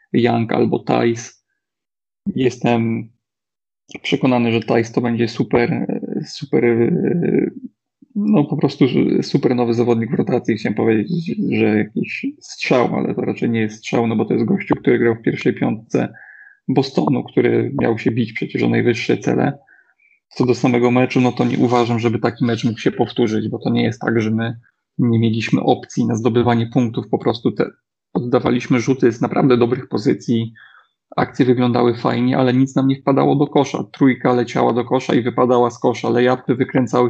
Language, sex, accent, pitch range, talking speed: Polish, male, native, 120-135 Hz, 170 wpm